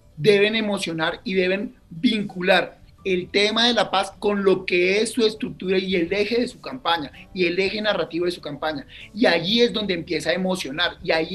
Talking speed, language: 200 wpm, Spanish